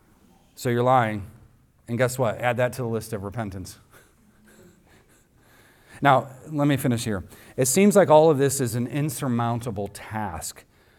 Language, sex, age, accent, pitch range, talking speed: English, male, 40-59, American, 110-130 Hz, 155 wpm